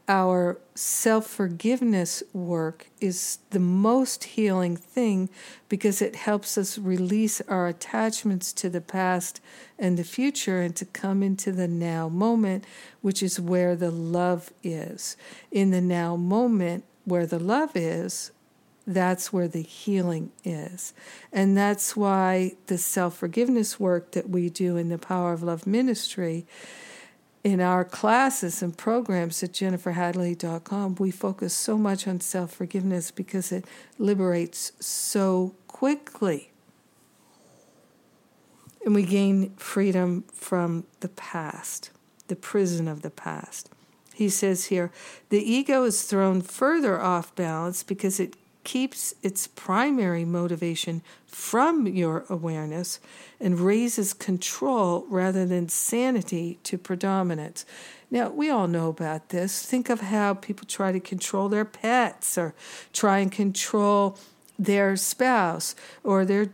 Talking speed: 130 wpm